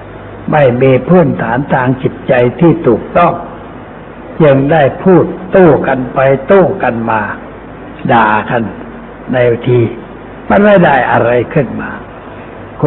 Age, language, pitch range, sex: 60-79, Thai, 125-170 Hz, male